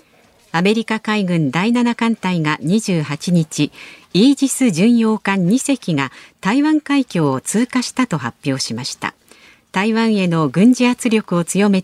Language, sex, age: Japanese, female, 50-69